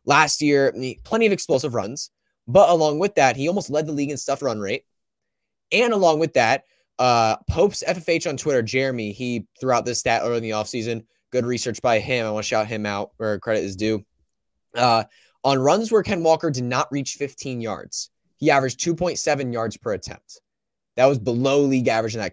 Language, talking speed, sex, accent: English, 205 wpm, male, American